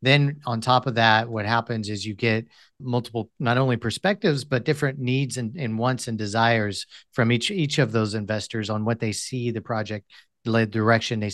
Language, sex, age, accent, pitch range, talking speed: English, male, 40-59, American, 105-120 Hz, 195 wpm